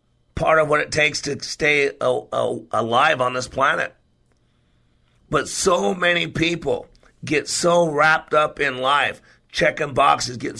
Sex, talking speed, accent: male, 135 wpm, American